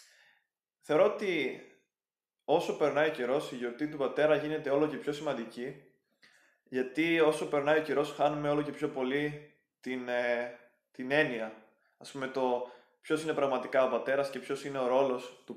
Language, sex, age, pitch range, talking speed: Greek, male, 20-39, 125-150 Hz, 165 wpm